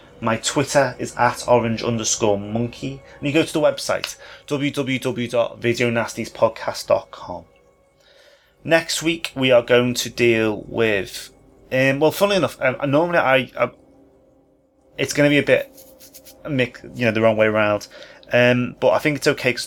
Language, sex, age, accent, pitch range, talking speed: English, male, 30-49, British, 110-130 Hz, 150 wpm